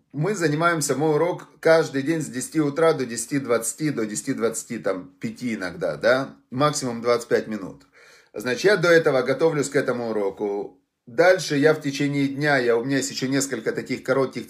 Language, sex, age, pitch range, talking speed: Russian, male, 30-49, 130-160 Hz, 160 wpm